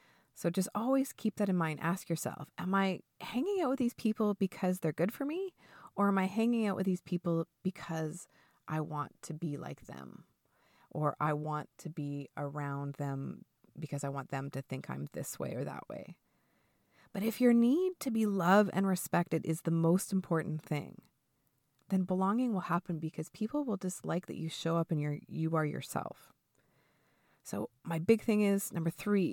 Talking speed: 190 wpm